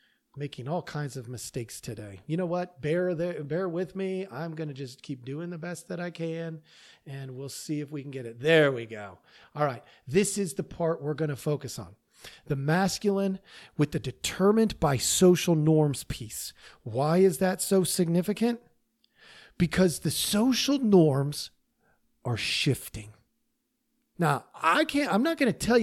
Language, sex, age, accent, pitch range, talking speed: English, male, 40-59, American, 140-205 Hz, 175 wpm